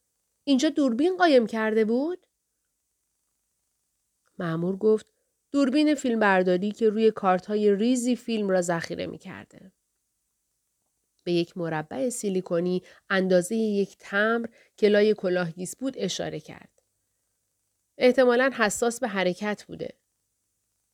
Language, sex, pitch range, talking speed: Persian, female, 185-250 Hz, 105 wpm